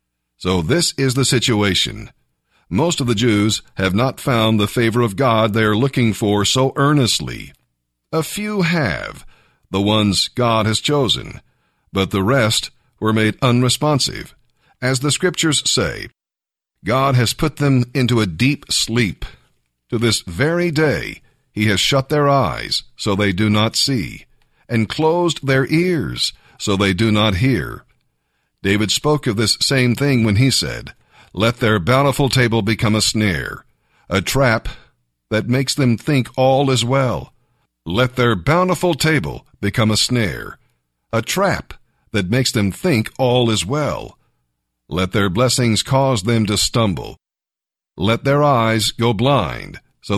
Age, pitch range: 50-69, 105-135 Hz